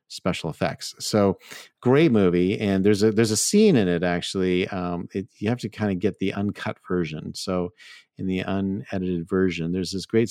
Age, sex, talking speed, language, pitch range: 40-59, male, 190 wpm, English, 90-105 Hz